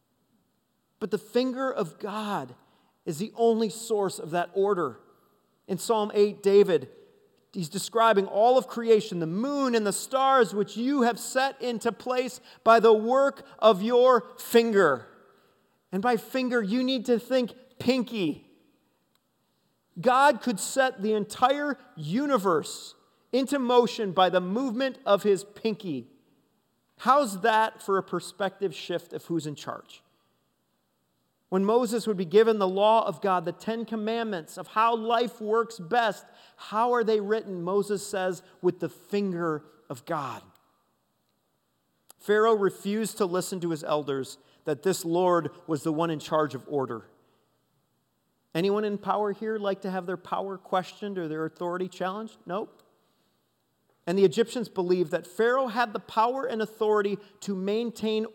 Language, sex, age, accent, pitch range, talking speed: English, male, 40-59, American, 180-230 Hz, 145 wpm